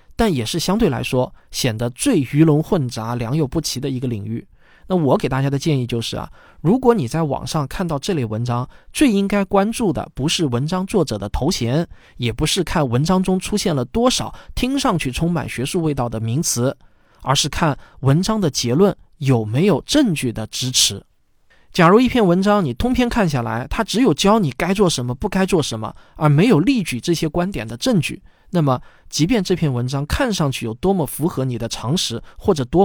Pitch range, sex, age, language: 125-190 Hz, male, 20-39, Chinese